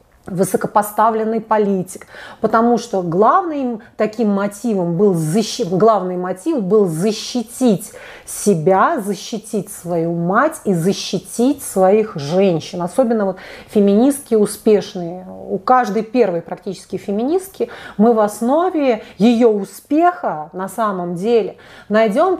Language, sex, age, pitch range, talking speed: Russian, female, 30-49, 185-240 Hz, 95 wpm